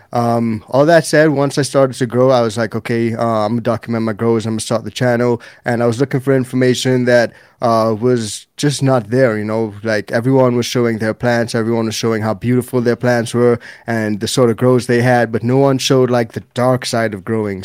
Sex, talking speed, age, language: male, 240 wpm, 20-39, English